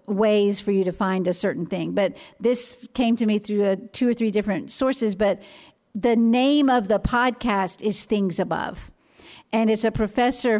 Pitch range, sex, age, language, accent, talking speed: 210-260 Hz, female, 50-69, English, American, 185 wpm